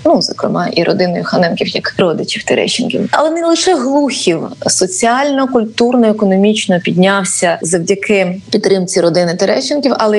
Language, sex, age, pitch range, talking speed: Ukrainian, female, 20-39, 190-235 Hz, 125 wpm